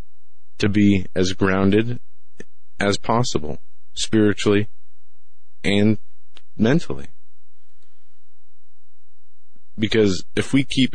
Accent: American